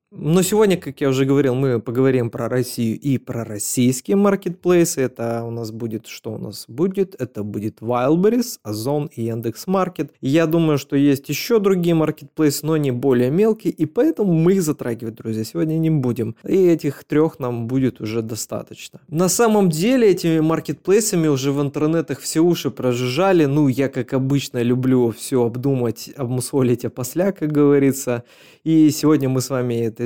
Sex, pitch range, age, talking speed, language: male, 125-165 Hz, 20-39, 165 wpm, Russian